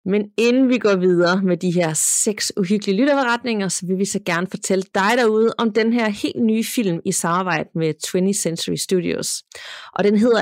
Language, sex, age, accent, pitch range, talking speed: Danish, female, 30-49, native, 170-220 Hz, 195 wpm